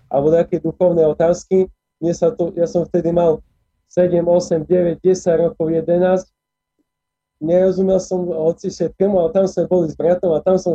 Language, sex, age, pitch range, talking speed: Slovak, male, 20-39, 155-175 Hz, 165 wpm